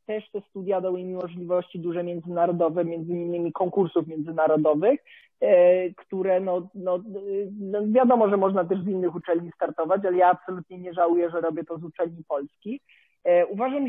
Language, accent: Polish, native